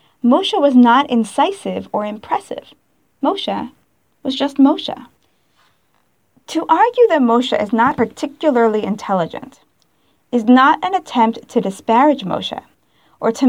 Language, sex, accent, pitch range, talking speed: English, female, American, 225-295 Hz, 120 wpm